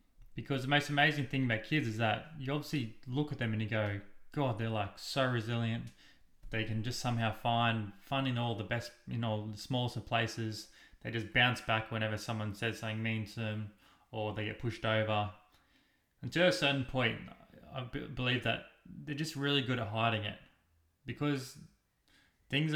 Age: 20-39